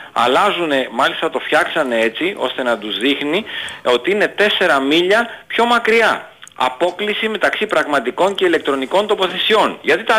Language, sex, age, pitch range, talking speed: Greek, male, 40-59, 135-230 Hz, 135 wpm